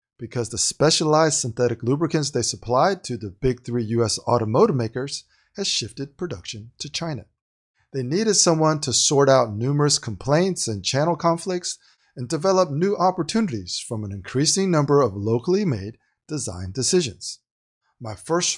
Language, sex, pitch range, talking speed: English, male, 115-160 Hz, 145 wpm